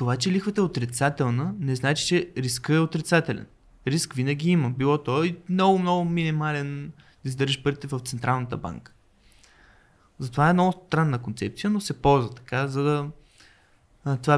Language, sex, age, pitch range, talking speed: Bulgarian, male, 20-39, 125-155 Hz, 165 wpm